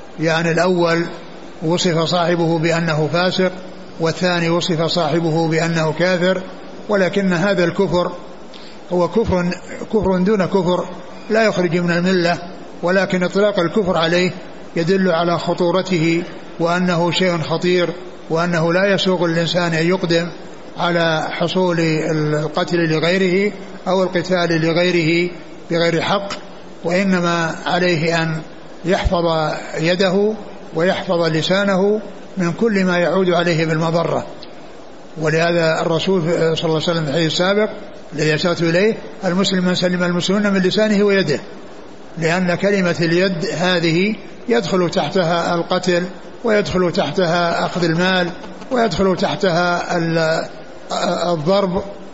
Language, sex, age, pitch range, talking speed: Arabic, male, 60-79, 165-185 Hz, 105 wpm